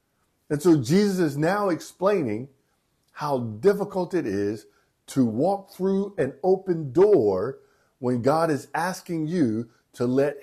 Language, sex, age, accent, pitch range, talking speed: English, male, 50-69, American, 105-160 Hz, 130 wpm